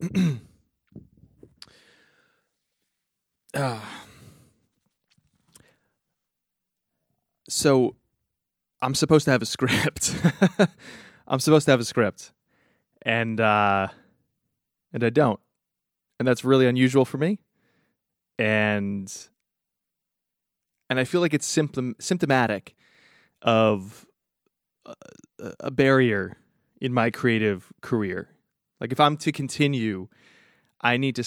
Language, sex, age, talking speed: English, male, 20-39, 95 wpm